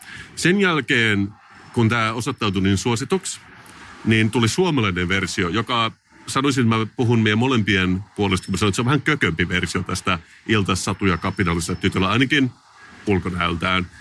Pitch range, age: 90-115 Hz, 30-49